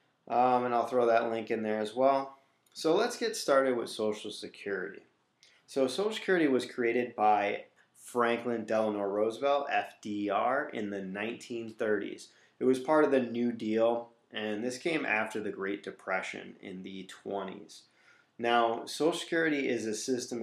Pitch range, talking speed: 105-130 Hz, 155 wpm